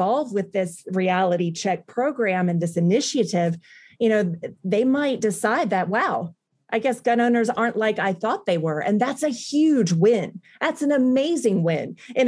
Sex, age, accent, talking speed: female, 30-49, American, 170 wpm